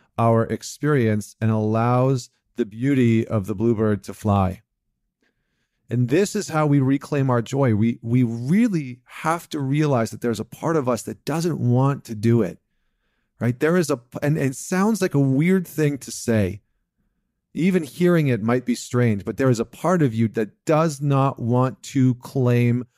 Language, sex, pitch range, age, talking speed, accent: English, male, 120-150 Hz, 40-59, 185 wpm, American